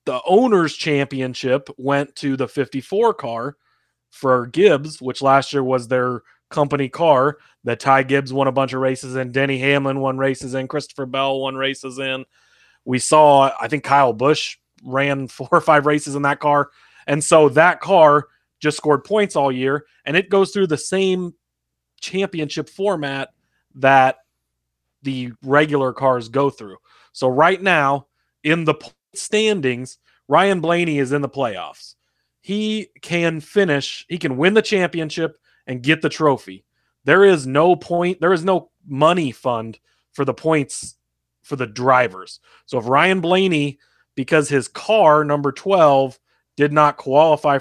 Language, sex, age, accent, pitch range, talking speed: English, male, 30-49, American, 130-160 Hz, 155 wpm